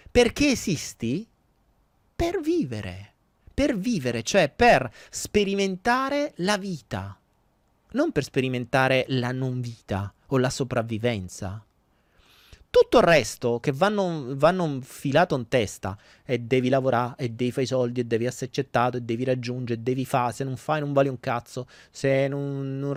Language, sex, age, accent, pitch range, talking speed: Italian, male, 30-49, native, 125-210 Hz, 150 wpm